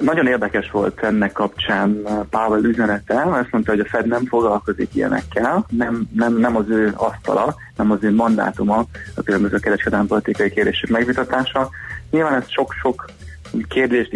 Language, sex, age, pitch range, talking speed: Hungarian, male, 30-49, 100-120 Hz, 155 wpm